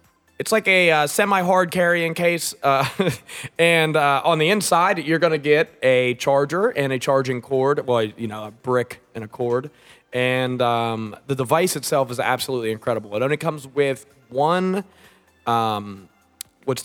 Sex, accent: male, American